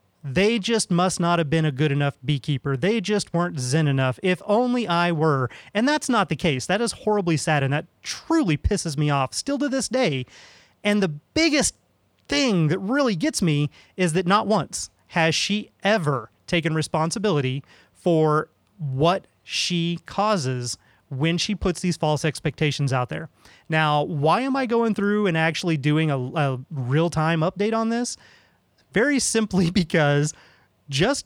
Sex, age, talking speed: male, 30-49, 165 wpm